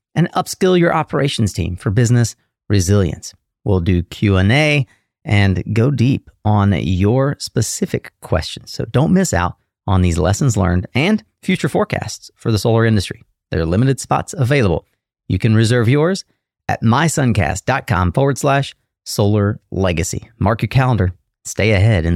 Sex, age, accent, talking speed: male, 30-49, American, 145 wpm